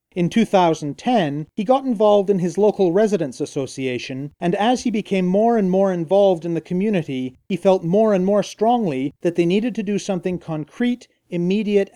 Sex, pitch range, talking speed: male, 160-205 Hz, 175 wpm